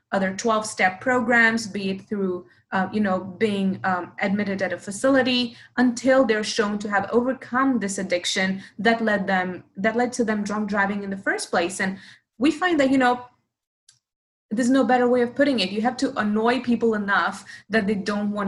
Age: 20-39